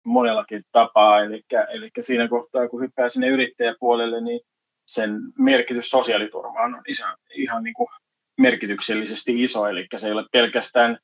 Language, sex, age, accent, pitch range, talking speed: Finnish, male, 30-49, native, 115-135 Hz, 140 wpm